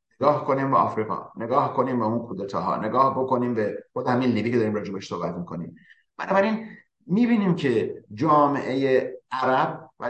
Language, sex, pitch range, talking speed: Persian, male, 115-155 Hz, 165 wpm